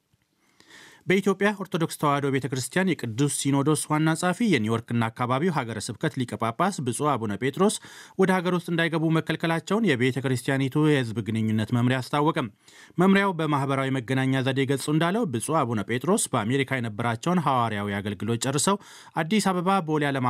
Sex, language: male, Amharic